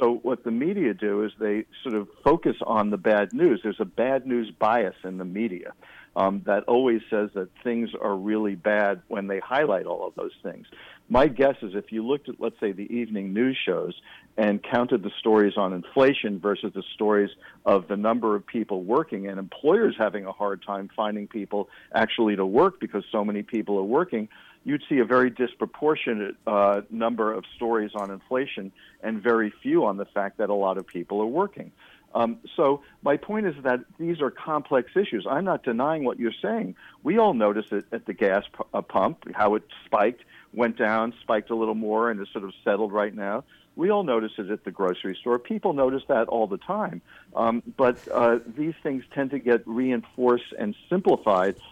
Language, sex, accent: English, male, American